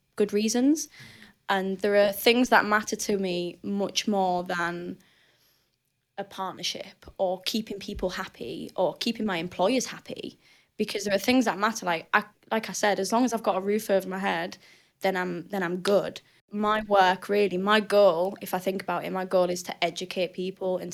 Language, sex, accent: English, female, British